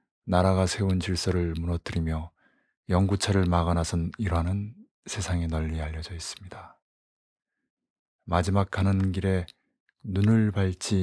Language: Korean